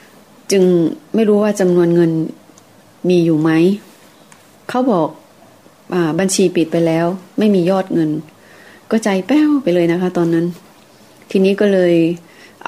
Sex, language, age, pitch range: female, Thai, 30-49, 165-200 Hz